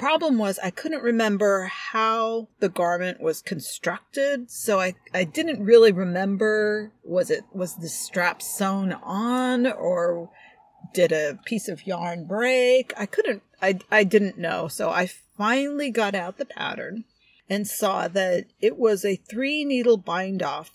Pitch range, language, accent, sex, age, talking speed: 180-235 Hz, English, American, female, 40-59, 155 wpm